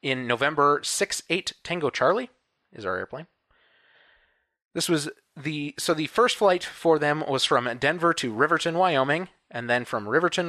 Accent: American